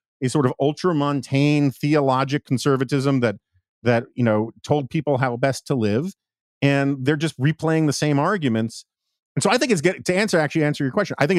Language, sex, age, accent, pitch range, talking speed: English, male, 40-59, American, 120-160 Hz, 200 wpm